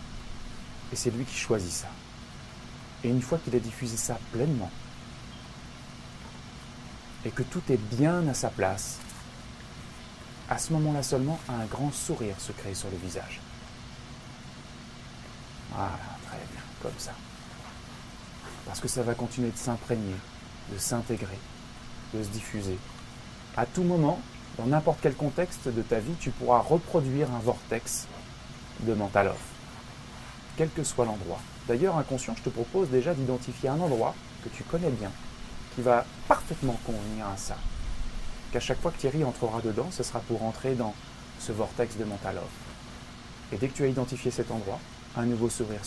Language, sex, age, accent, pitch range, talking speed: French, male, 30-49, French, 110-130 Hz, 155 wpm